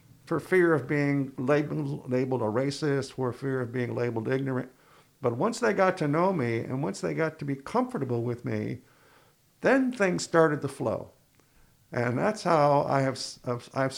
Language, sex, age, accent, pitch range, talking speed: English, male, 50-69, American, 135-170 Hz, 175 wpm